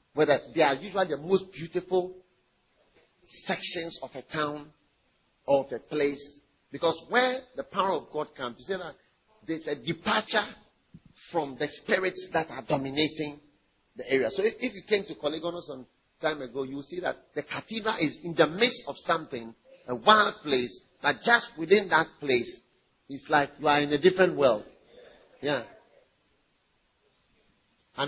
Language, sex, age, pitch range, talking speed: English, male, 40-59, 150-235 Hz, 155 wpm